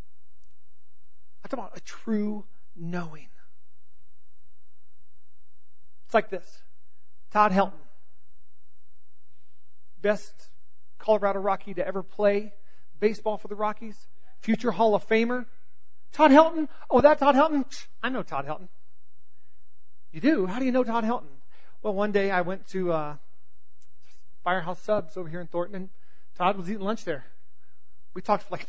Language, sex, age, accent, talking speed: English, male, 40-59, American, 140 wpm